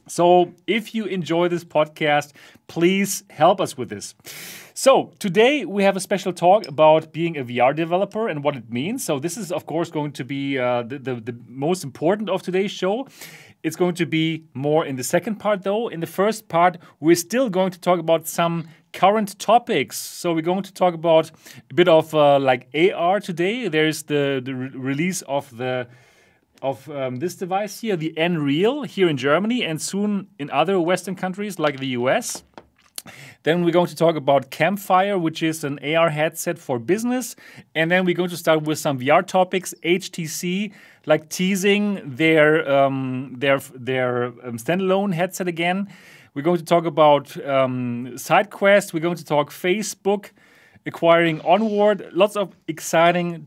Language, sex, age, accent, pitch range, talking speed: English, male, 30-49, German, 145-190 Hz, 175 wpm